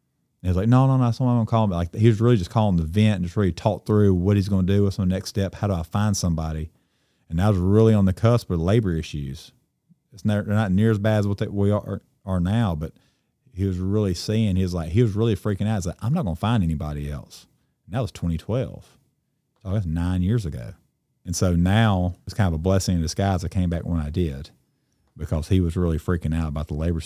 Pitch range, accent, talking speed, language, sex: 85-105 Hz, American, 255 wpm, English, male